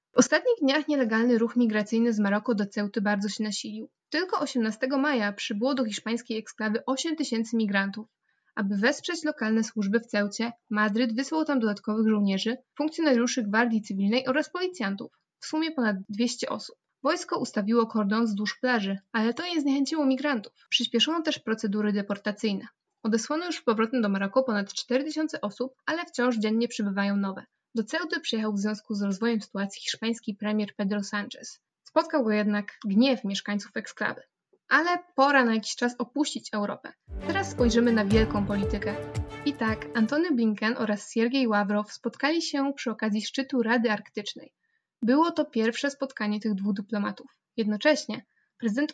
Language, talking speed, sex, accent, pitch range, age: Polish, 155 wpm, female, native, 215-270 Hz, 20-39